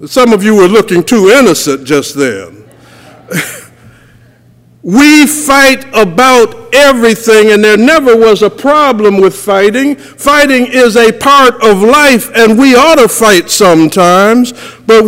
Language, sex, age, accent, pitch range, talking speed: English, male, 60-79, American, 190-250 Hz, 135 wpm